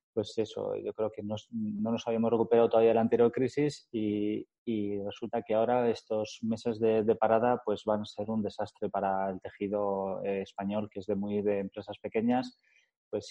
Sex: male